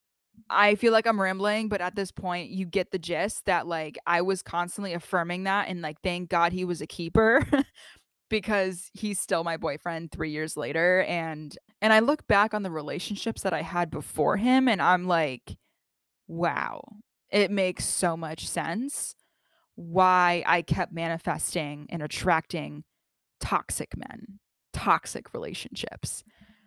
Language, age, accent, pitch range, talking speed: English, 20-39, American, 170-215 Hz, 155 wpm